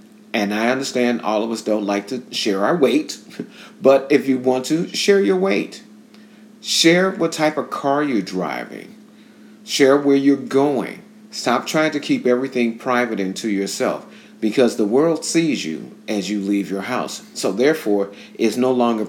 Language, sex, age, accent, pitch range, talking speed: English, male, 40-59, American, 105-140 Hz, 175 wpm